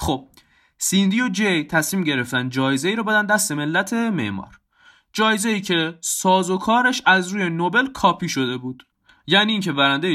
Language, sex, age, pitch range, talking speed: Persian, male, 20-39, 140-225 Hz, 170 wpm